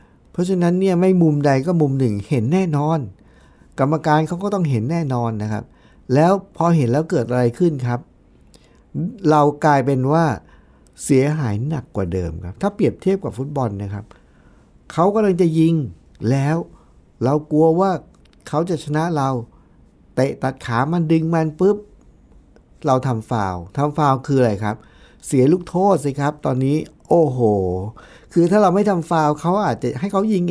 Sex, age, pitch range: male, 60-79, 120-170 Hz